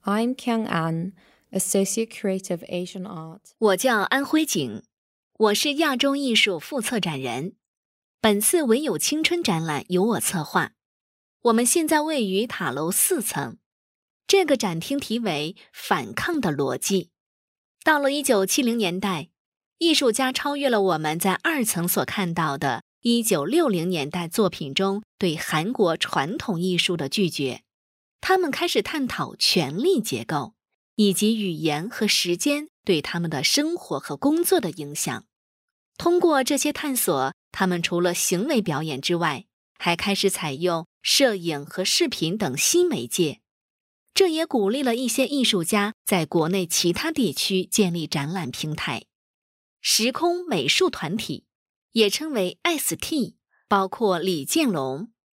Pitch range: 175-275 Hz